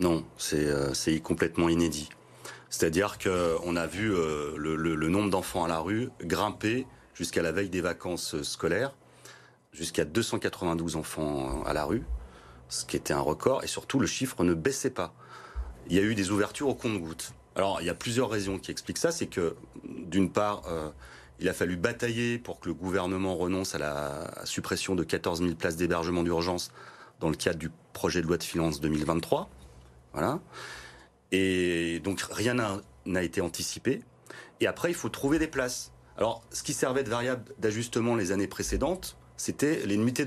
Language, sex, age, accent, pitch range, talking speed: French, male, 30-49, French, 75-105 Hz, 180 wpm